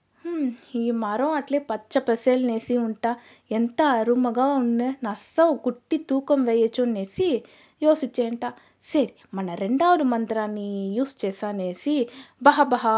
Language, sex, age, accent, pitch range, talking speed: Telugu, female, 20-39, native, 220-290 Hz, 110 wpm